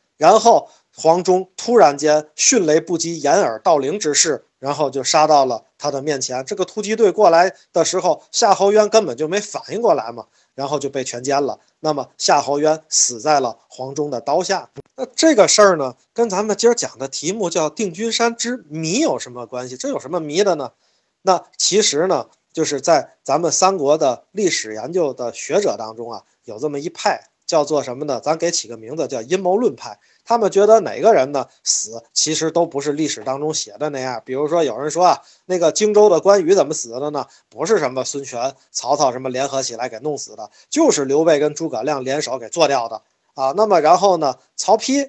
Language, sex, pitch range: Chinese, male, 135-190 Hz